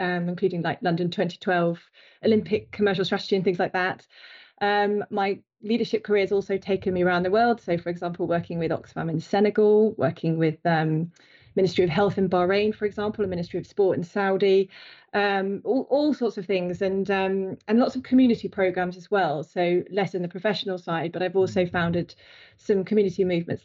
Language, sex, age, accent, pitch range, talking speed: English, female, 30-49, British, 175-200 Hz, 190 wpm